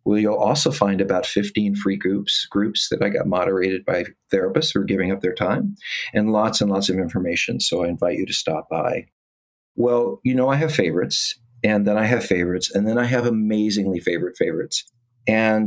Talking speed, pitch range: 205 wpm, 100-120 Hz